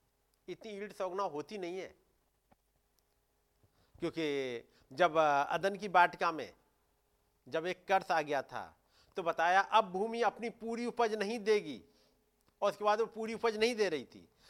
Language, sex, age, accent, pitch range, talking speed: Hindi, male, 50-69, native, 160-225 Hz, 155 wpm